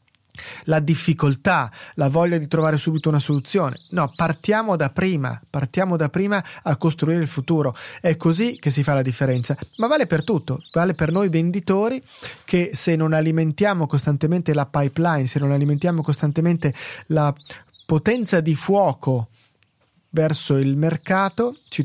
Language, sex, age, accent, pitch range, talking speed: Italian, male, 30-49, native, 140-175 Hz, 150 wpm